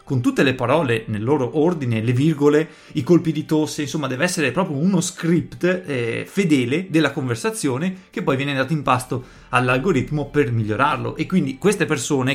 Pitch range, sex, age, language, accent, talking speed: 125-160 Hz, male, 30-49, Italian, native, 175 wpm